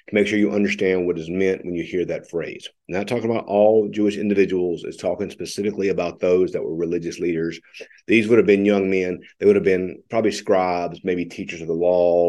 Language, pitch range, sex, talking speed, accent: English, 90-110 Hz, male, 215 wpm, American